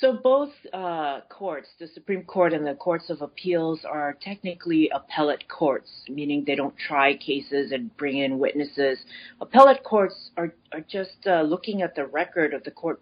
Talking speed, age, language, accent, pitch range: 175 wpm, 40-59, English, American, 150-195 Hz